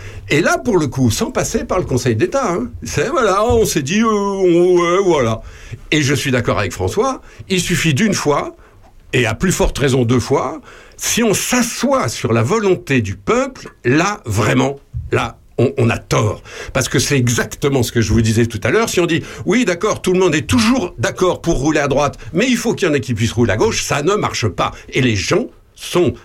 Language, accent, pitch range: French, French, 115-185 Hz